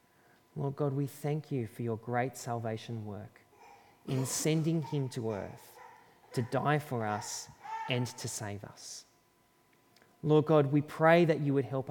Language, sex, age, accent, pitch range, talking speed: English, male, 30-49, Australian, 115-140 Hz, 155 wpm